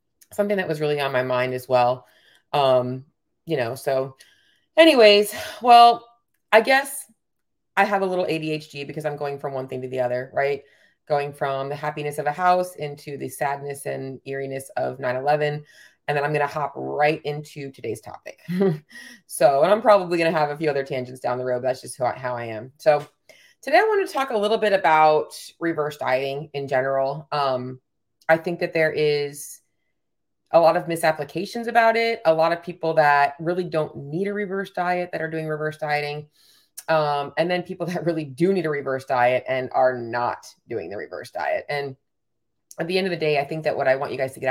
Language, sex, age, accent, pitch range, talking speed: English, female, 30-49, American, 135-175 Hz, 205 wpm